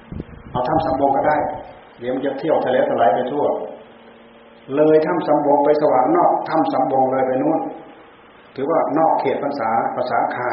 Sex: male